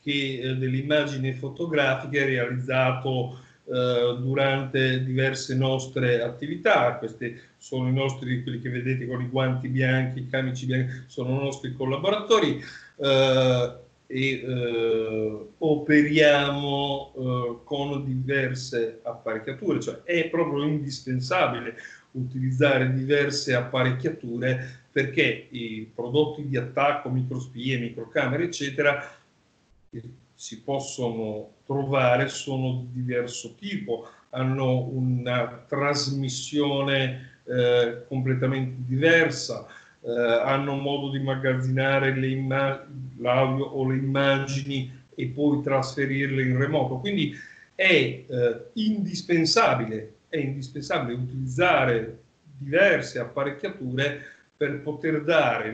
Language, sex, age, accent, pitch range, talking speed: Italian, male, 50-69, native, 125-140 Hz, 100 wpm